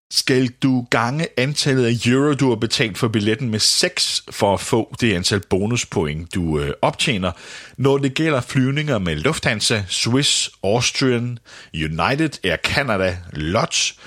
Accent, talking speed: native, 145 wpm